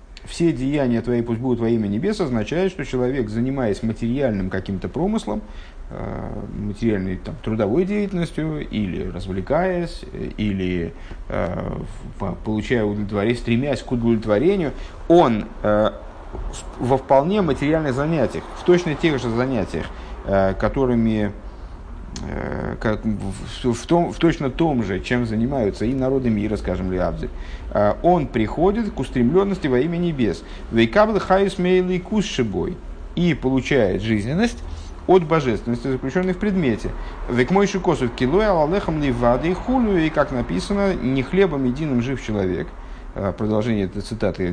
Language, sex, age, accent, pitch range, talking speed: Russian, male, 50-69, native, 100-160 Hz, 120 wpm